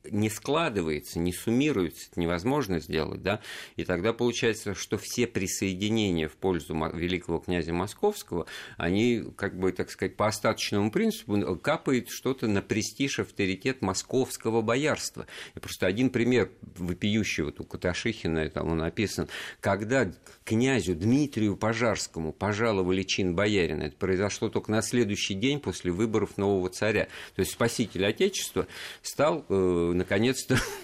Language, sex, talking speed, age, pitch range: Russian, male, 130 wpm, 50-69, 90-115 Hz